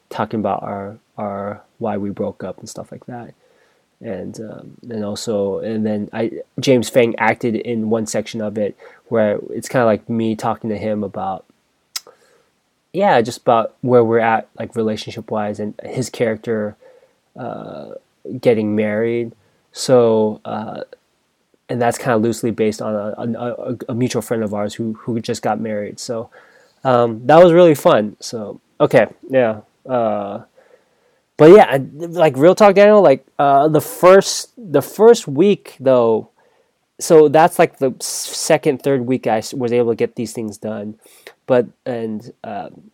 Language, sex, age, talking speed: English, male, 20-39, 160 wpm